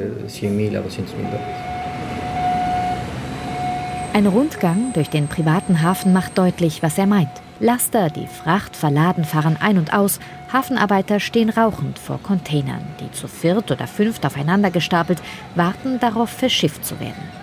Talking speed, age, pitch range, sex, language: 125 wpm, 30-49, 150-215 Hz, female, German